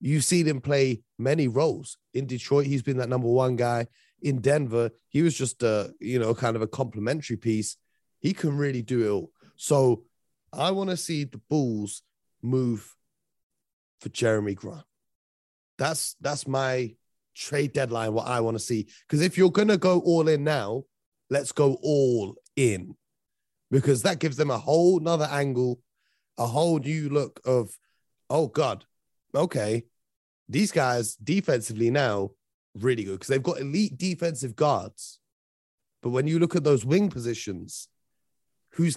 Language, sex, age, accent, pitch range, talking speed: English, male, 30-49, British, 115-150 Hz, 160 wpm